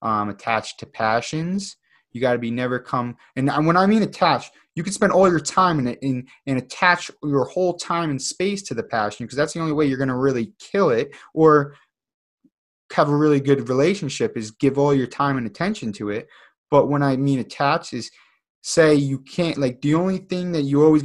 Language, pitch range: English, 125-155 Hz